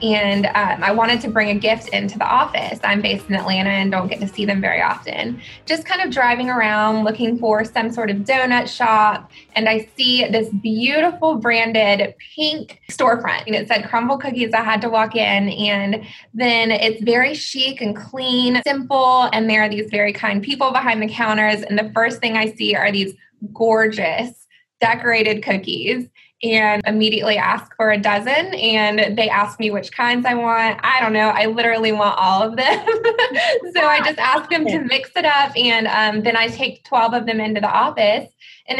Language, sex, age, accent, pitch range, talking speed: English, female, 20-39, American, 210-245 Hz, 195 wpm